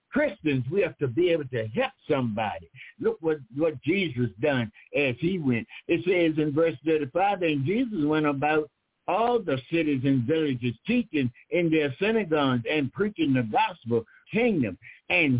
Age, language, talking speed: 60-79, English, 160 wpm